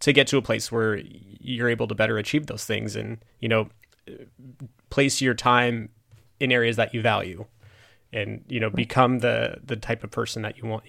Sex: male